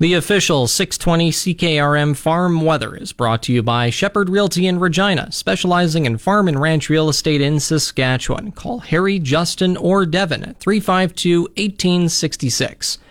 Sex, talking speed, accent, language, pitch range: male, 145 wpm, American, English, 130-175 Hz